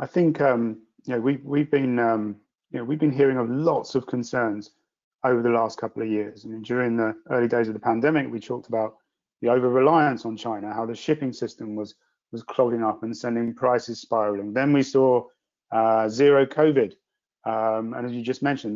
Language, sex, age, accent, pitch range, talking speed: English, male, 30-49, British, 115-135 Hz, 210 wpm